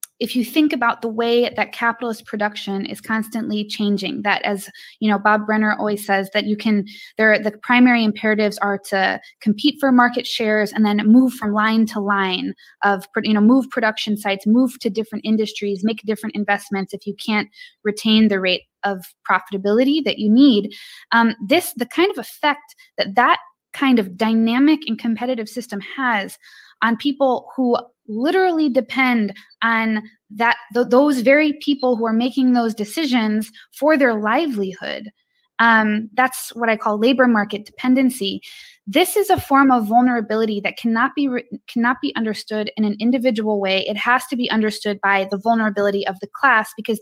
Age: 20-39